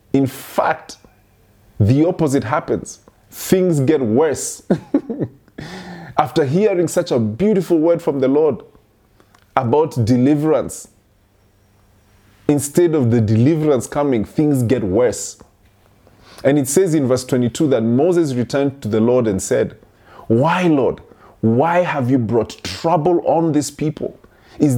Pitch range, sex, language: 105-150 Hz, male, English